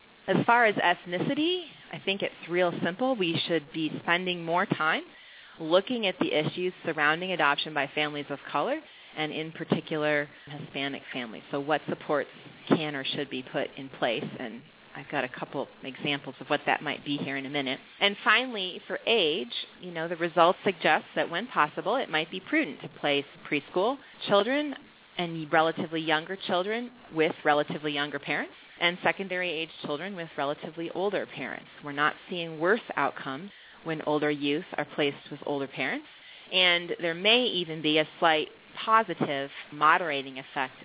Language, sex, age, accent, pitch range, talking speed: English, female, 30-49, American, 140-175 Hz, 165 wpm